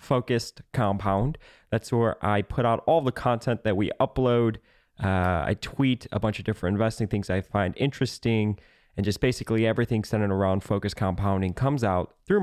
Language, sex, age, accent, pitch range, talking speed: English, male, 20-39, American, 100-125 Hz, 175 wpm